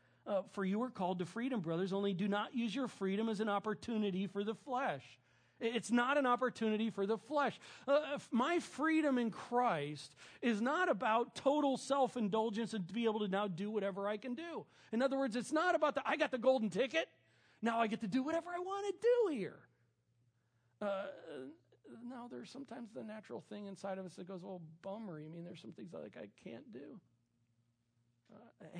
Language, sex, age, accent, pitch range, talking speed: English, male, 40-59, American, 180-250 Hz, 200 wpm